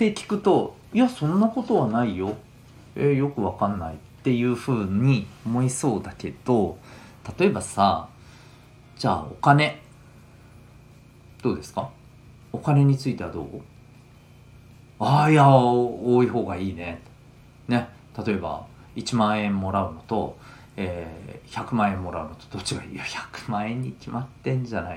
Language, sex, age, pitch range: Japanese, male, 40-59, 105-135 Hz